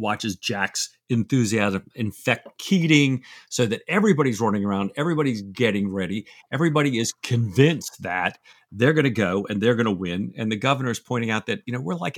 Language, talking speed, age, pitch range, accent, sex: English, 175 wpm, 50-69, 105-140 Hz, American, male